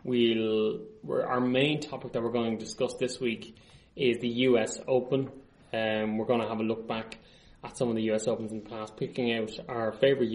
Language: English